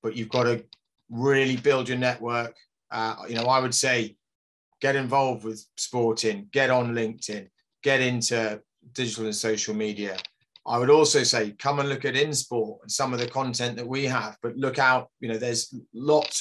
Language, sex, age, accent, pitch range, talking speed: English, male, 30-49, British, 115-135 Hz, 185 wpm